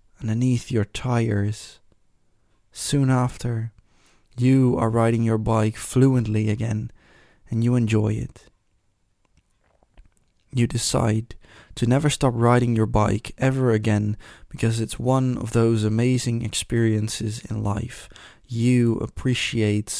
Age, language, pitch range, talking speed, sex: 20-39, English, 105-120 Hz, 110 wpm, male